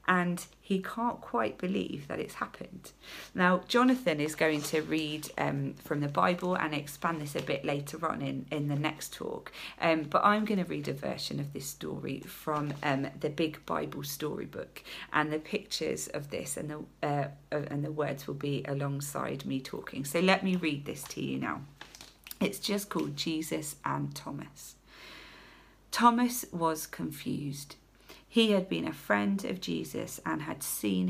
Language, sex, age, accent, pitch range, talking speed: English, female, 40-59, British, 140-205 Hz, 175 wpm